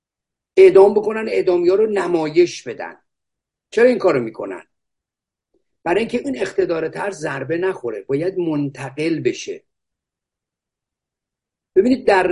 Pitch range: 150-245 Hz